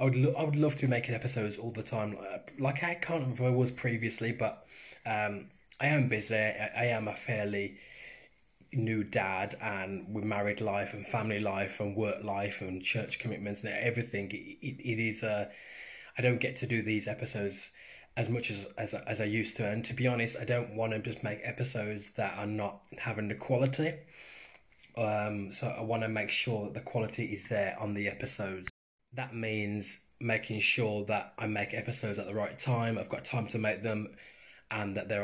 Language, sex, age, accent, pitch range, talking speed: English, male, 20-39, British, 105-120 Hz, 210 wpm